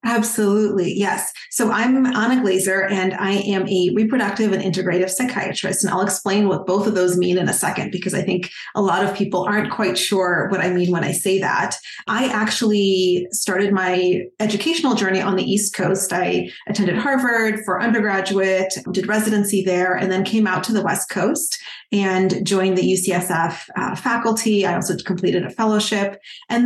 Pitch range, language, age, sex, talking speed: 185-215 Hz, English, 30-49, female, 180 wpm